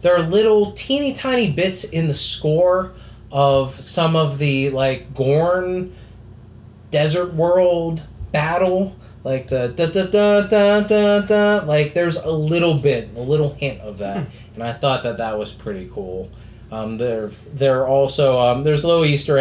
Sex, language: male, English